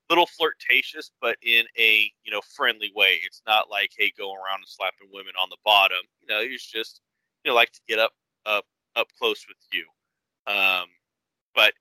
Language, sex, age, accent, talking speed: English, male, 30-49, American, 195 wpm